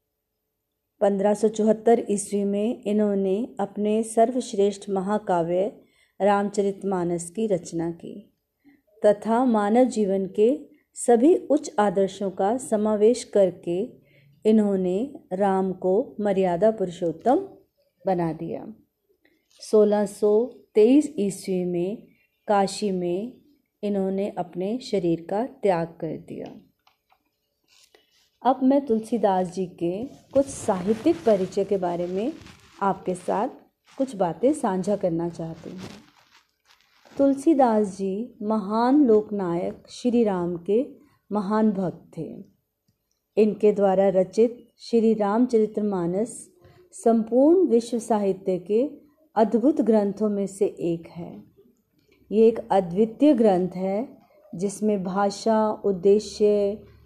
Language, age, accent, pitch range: Hindi, 30-49, native, 190-230 Hz